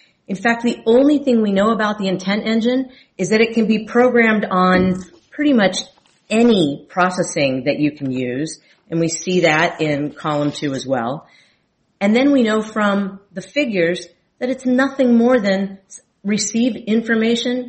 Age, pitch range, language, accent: 40-59, 160-205 Hz, English, American